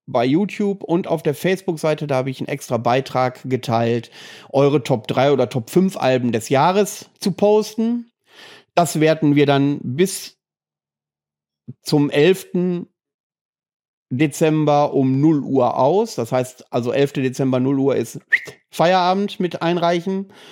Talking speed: 135 wpm